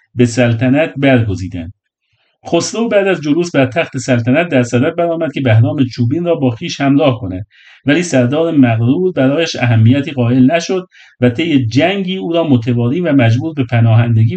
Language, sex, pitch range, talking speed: Persian, male, 125-160 Hz, 160 wpm